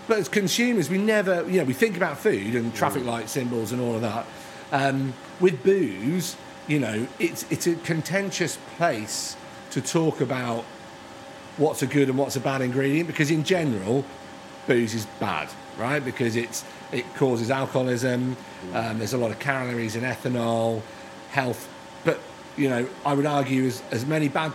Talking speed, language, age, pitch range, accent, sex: 175 wpm, English, 40-59, 120-155 Hz, British, male